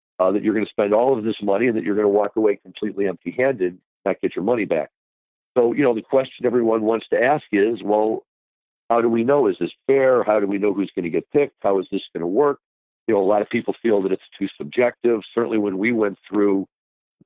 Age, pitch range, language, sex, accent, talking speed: 50-69, 95-110 Hz, English, male, American, 255 wpm